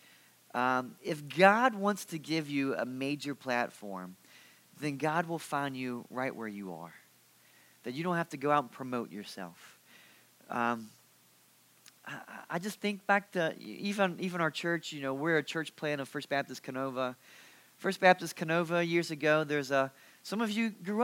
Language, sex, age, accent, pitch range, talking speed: English, male, 30-49, American, 125-165 Hz, 175 wpm